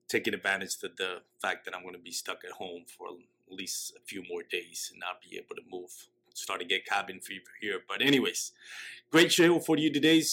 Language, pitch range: English, 105-140 Hz